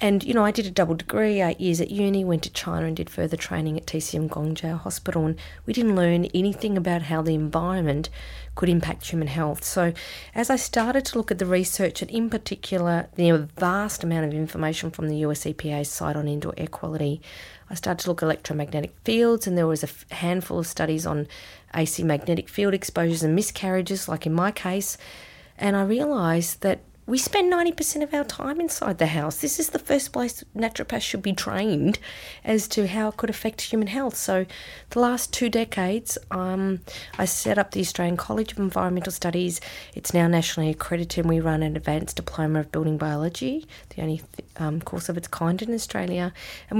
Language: English